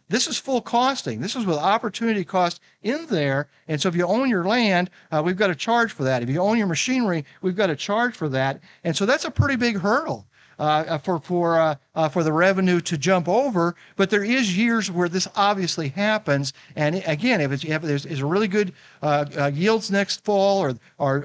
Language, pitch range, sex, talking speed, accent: English, 150-205 Hz, male, 215 wpm, American